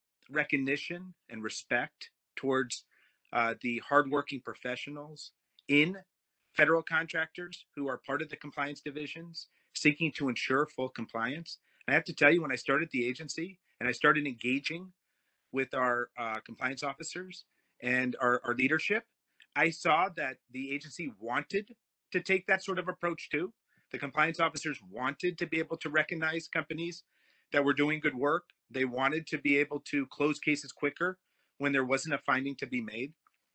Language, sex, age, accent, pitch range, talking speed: English, male, 30-49, American, 130-165 Hz, 165 wpm